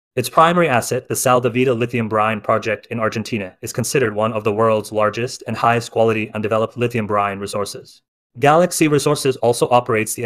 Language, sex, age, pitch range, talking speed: English, male, 30-49, 110-125 Hz, 175 wpm